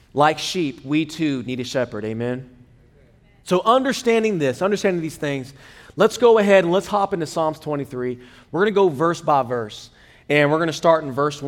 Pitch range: 125-180 Hz